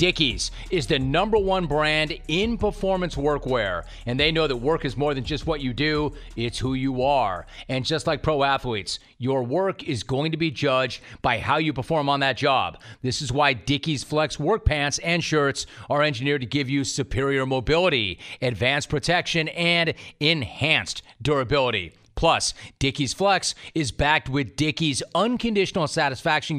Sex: male